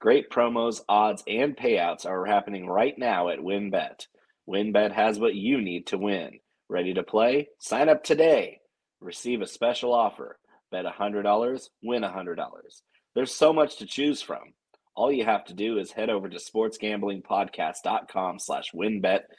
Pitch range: 100-130 Hz